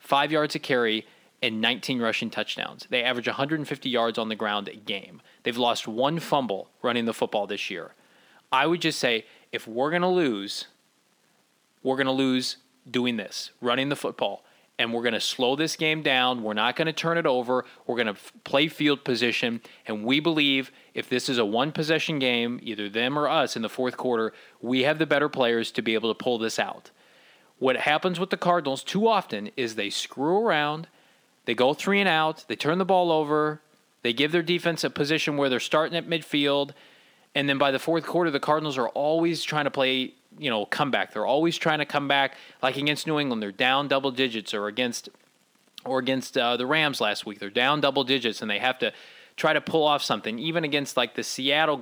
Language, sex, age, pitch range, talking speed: English, male, 20-39, 120-155 Hz, 210 wpm